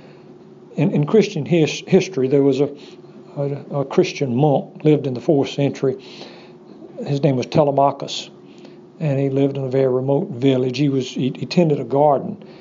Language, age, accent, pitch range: English, 60-79, American, 135-165 Hz